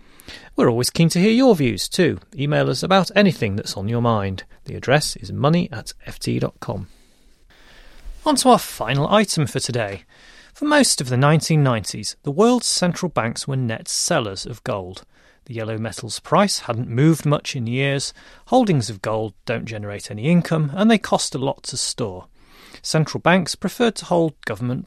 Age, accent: 30-49, British